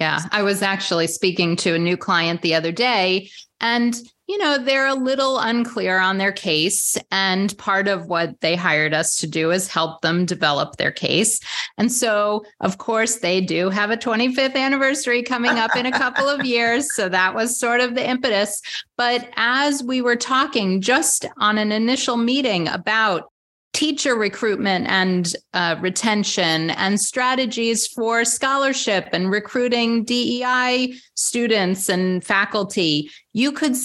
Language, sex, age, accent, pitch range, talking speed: English, female, 30-49, American, 185-245 Hz, 160 wpm